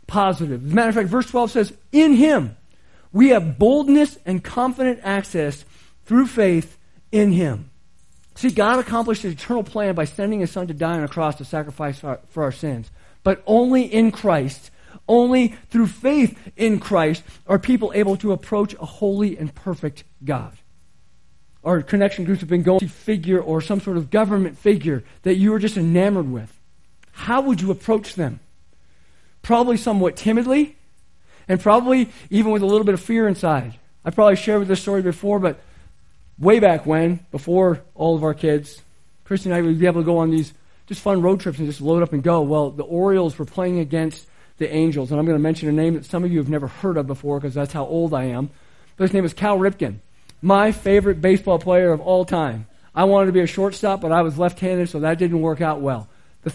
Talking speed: 205 wpm